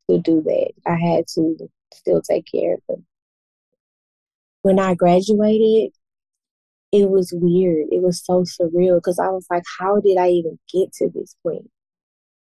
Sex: female